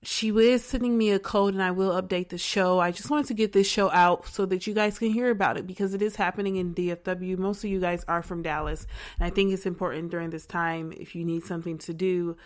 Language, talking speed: English, 265 wpm